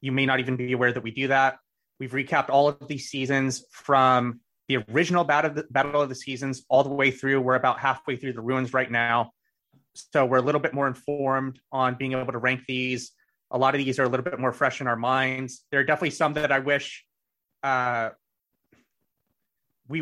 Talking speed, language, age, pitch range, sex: 210 wpm, English, 30-49, 130-150 Hz, male